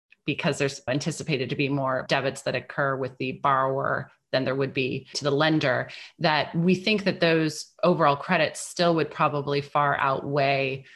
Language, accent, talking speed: English, American, 170 wpm